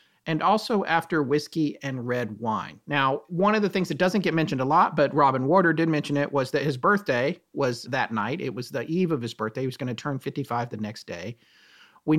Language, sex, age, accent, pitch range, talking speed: English, male, 40-59, American, 140-185 Hz, 235 wpm